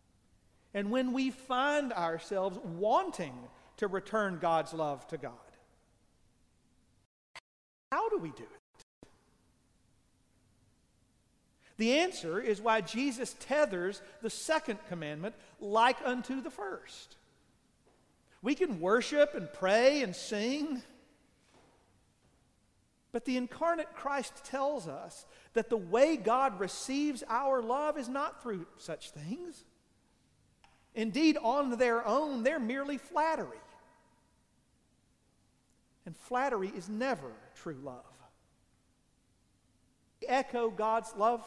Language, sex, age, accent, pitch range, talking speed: English, male, 40-59, American, 205-275 Hz, 105 wpm